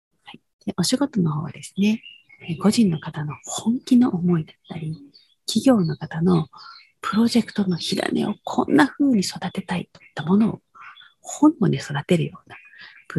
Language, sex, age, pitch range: Japanese, female, 40-59, 165-220 Hz